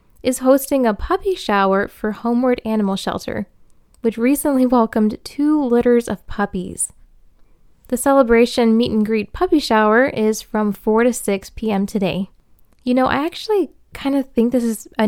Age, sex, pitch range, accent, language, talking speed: 10-29, female, 205-245 Hz, American, English, 150 wpm